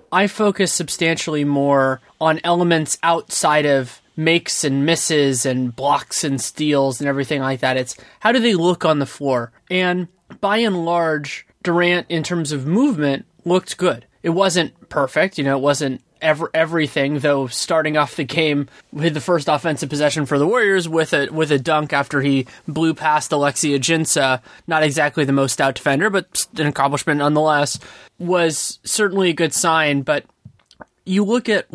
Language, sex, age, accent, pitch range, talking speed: English, male, 20-39, American, 140-170 Hz, 170 wpm